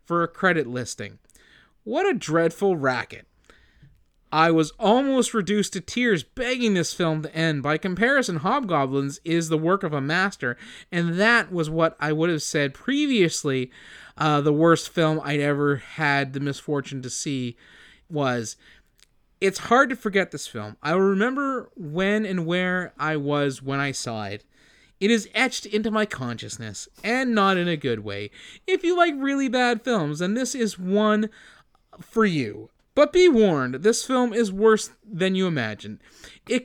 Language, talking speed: English, 165 wpm